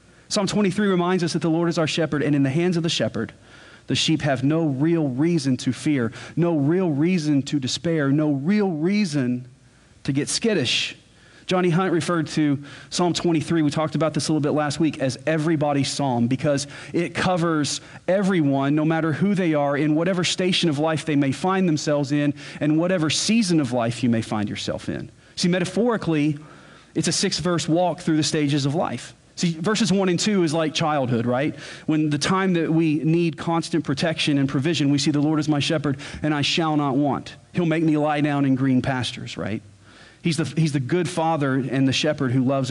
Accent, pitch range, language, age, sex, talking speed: American, 140-175 Hz, English, 40-59, male, 205 wpm